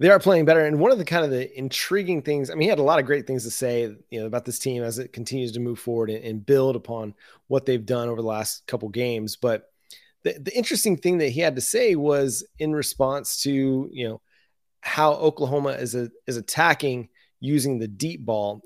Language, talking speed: English, 235 wpm